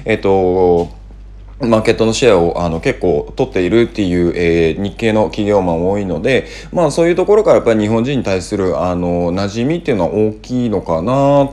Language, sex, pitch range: Japanese, male, 95-130 Hz